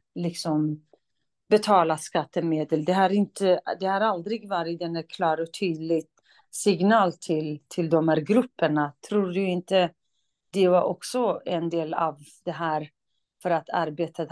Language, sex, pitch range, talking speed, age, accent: Swedish, female, 160-185 Hz, 145 wpm, 40-59, native